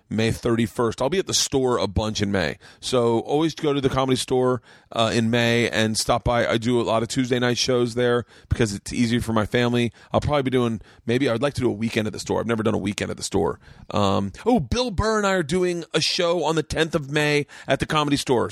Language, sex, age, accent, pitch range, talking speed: English, male, 30-49, American, 115-145 Hz, 260 wpm